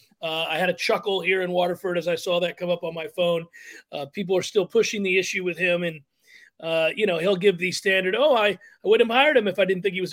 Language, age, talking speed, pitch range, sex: English, 40-59, 280 wpm, 175-215 Hz, male